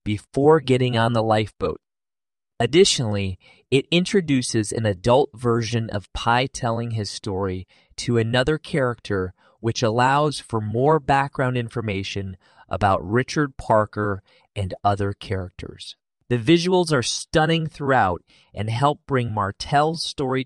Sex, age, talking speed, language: male, 30-49, 120 wpm, English